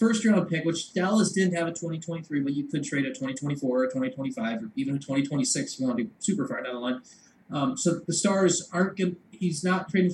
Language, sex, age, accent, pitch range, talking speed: English, male, 20-39, American, 130-185 Hz, 225 wpm